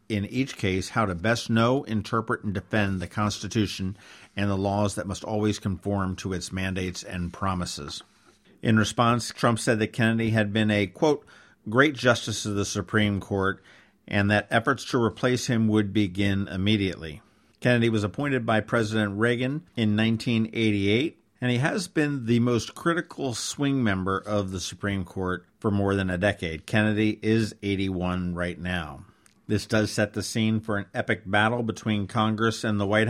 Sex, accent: male, American